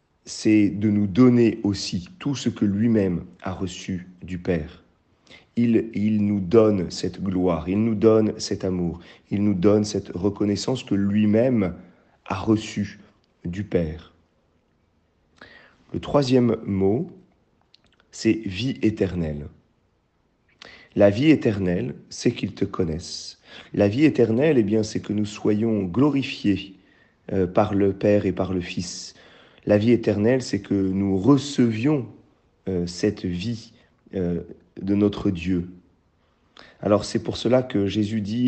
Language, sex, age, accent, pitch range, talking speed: French, male, 40-59, French, 90-110 Hz, 135 wpm